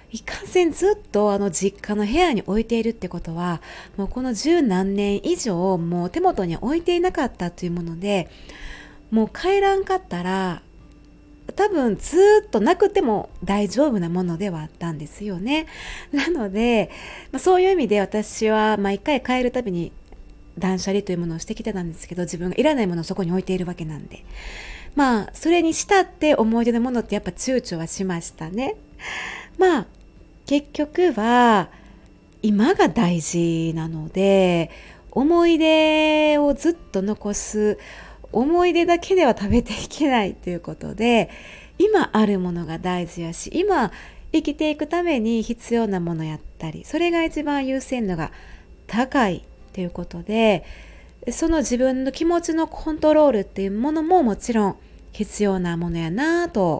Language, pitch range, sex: Japanese, 180-305 Hz, female